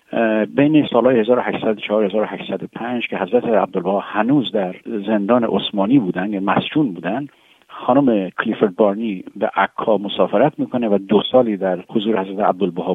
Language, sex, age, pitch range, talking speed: Persian, male, 50-69, 100-135 Hz, 125 wpm